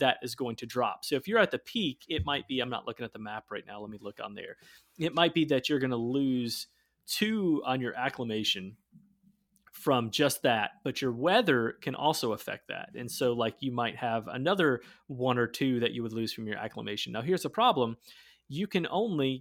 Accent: American